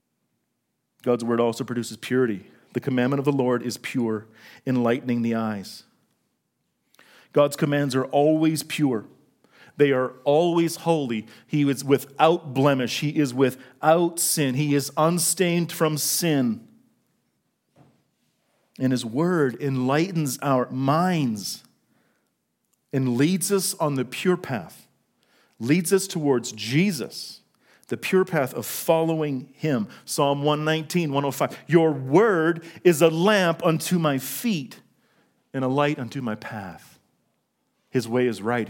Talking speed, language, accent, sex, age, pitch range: 125 wpm, English, American, male, 40-59, 120-160 Hz